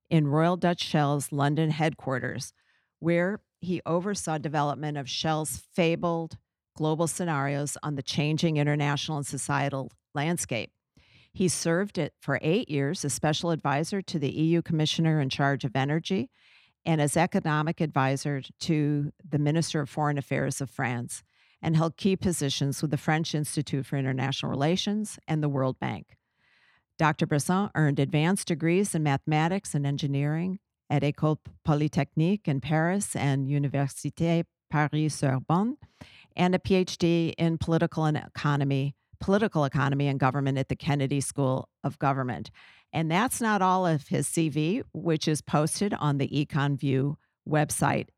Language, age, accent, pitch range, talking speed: English, 50-69, American, 140-175 Hz, 140 wpm